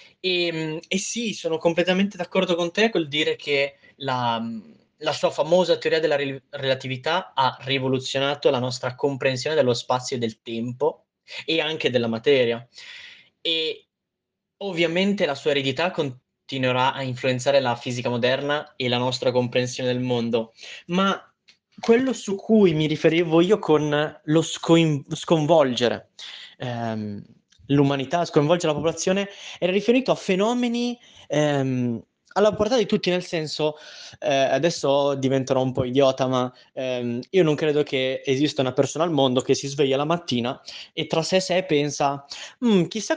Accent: native